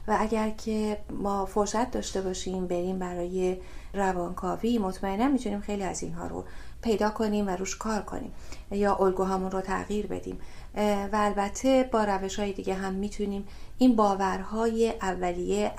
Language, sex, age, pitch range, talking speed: Persian, female, 30-49, 185-210 Hz, 145 wpm